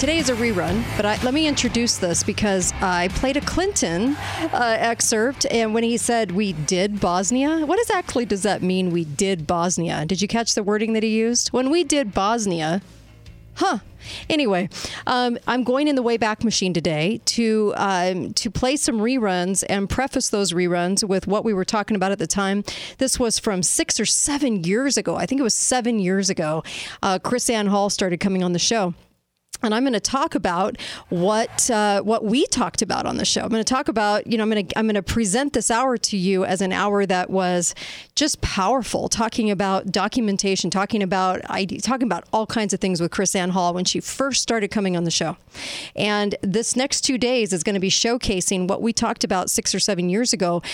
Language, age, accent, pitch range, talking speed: English, 40-59, American, 190-240 Hz, 215 wpm